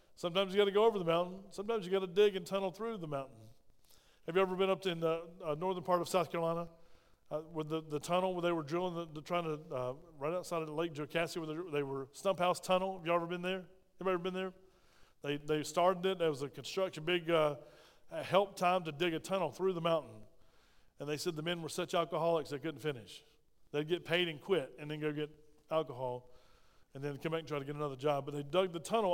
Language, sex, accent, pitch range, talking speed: English, male, American, 150-180 Hz, 245 wpm